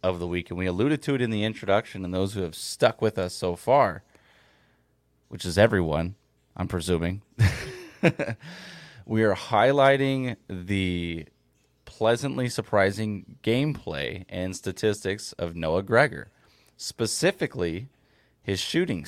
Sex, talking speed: male, 125 wpm